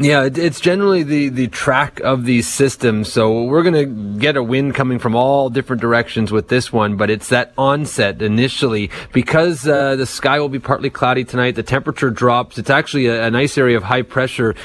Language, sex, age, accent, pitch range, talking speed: English, male, 30-49, American, 115-140 Hz, 205 wpm